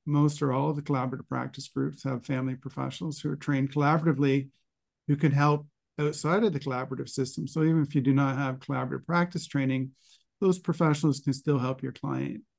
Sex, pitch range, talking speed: male, 130-145 Hz, 190 wpm